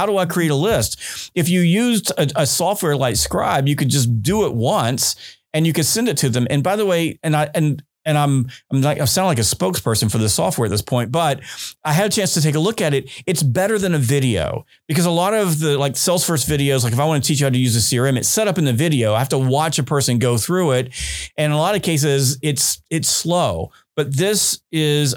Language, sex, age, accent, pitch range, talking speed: English, male, 40-59, American, 125-155 Hz, 265 wpm